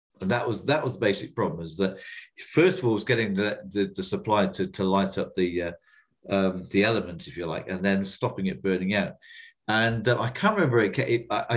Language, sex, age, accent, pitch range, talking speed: English, male, 50-69, British, 100-130 Hz, 230 wpm